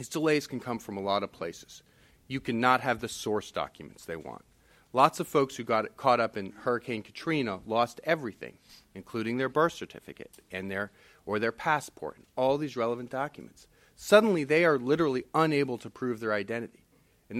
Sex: male